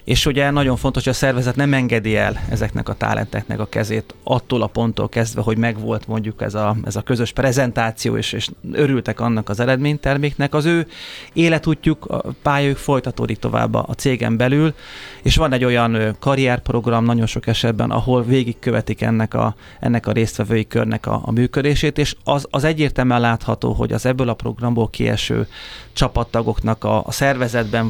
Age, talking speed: 30-49, 165 wpm